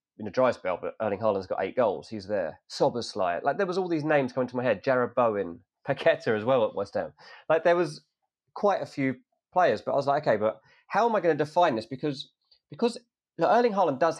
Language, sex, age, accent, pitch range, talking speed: English, male, 30-49, British, 110-155 Hz, 240 wpm